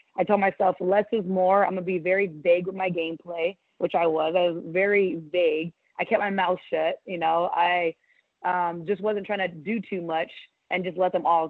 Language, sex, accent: English, female, American